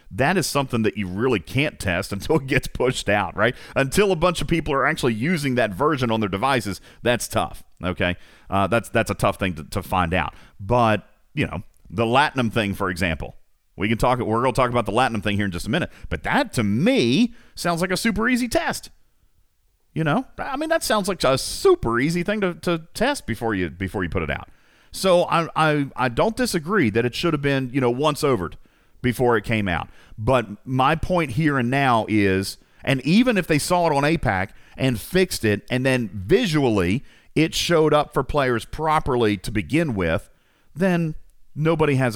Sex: male